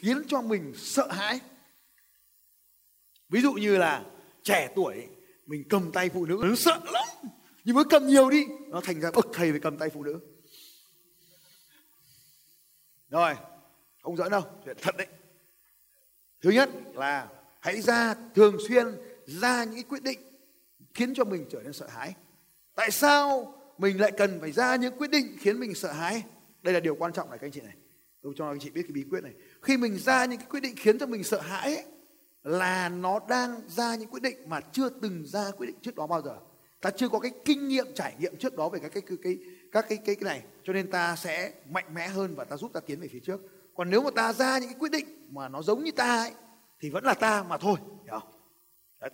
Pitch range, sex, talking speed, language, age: 180-265 Hz, male, 215 wpm, Vietnamese, 20-39